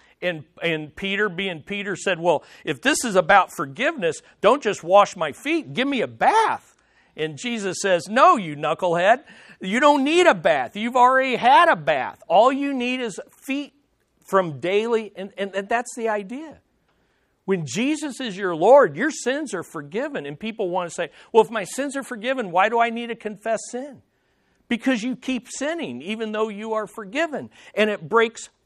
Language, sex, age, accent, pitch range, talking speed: English, male, 50-69, American, 185-250 Hz, 185 wpm